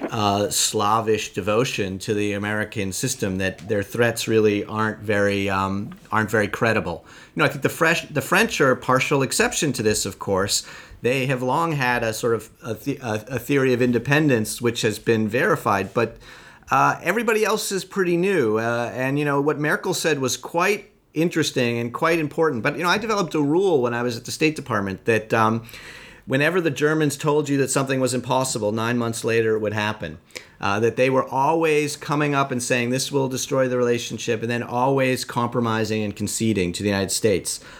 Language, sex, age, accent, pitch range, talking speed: English, male, 40-59, American, 110-145 Hz, 195 wpm